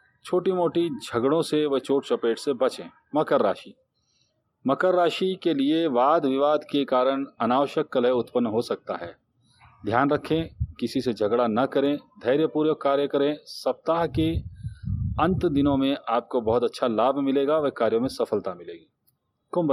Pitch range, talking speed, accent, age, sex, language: 130-155 Hz, 155 wpm, native, 40-59, male, Hindi